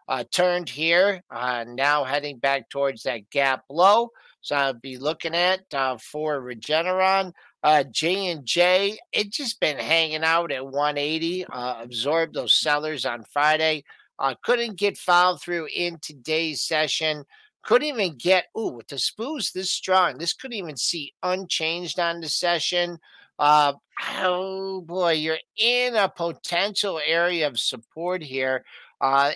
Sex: male